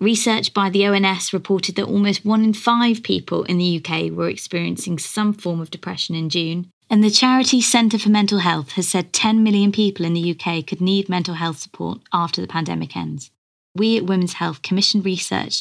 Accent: British